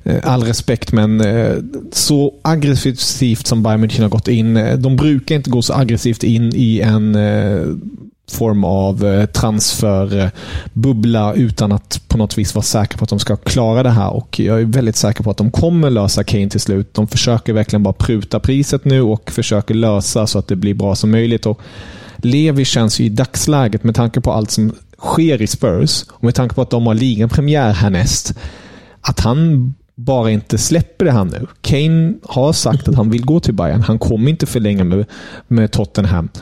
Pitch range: 105-130 Hz